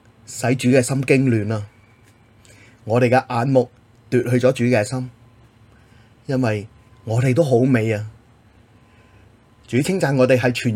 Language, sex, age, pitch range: Chinese, male, 30-49, 115-130 Hz